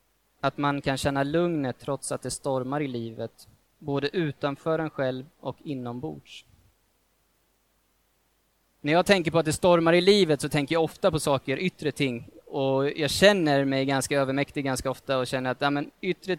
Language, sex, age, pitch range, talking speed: Swedish, male, 20-39, 130-165 Hz, 170 wpm